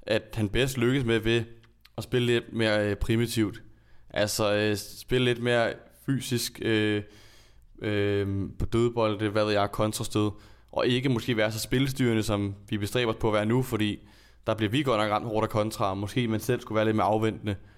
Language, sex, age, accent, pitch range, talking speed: English, male, 20-39, Danish, 105-115 Hz, 190 wpm